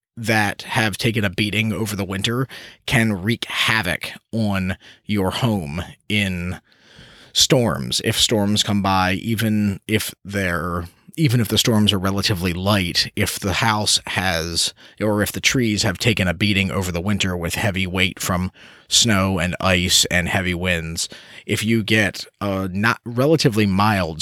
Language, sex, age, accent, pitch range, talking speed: English, male, 30-49, American, 90-105 Hz, 155 wpm